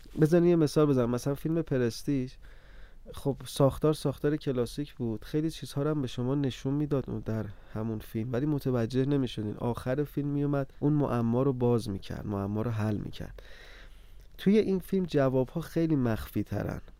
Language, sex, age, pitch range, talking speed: Persian, male, 30-49, 115-145 Hz, 170 wpm